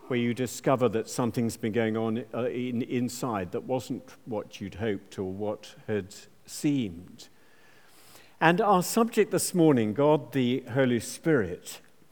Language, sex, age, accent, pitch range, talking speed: English, male, 50-69, British, 115-150 Hz, 145 wpm